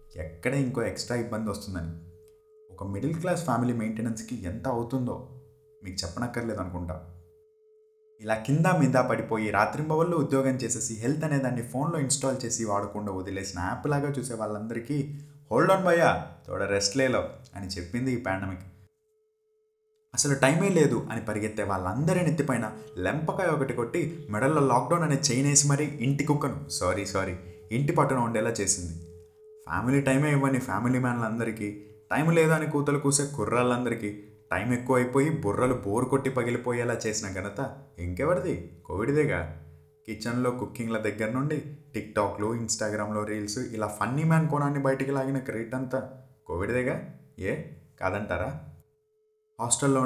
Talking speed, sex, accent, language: 130 wpm, male, native, Telugu